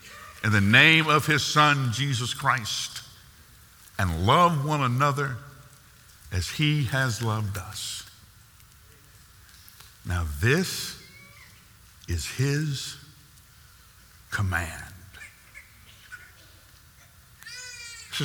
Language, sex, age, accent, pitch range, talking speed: English, male, 60-79, American, 95-135 Hz, 75 wpm